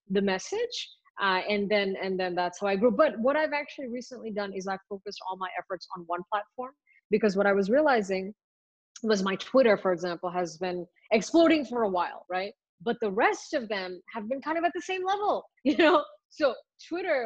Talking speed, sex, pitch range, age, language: 210 wpm, female, 190-245 Hz, 20-39, English